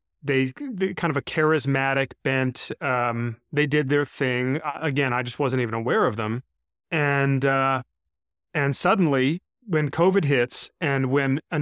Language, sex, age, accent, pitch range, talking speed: English, male, 30-49, American, 130-160 Hz, 145 wpm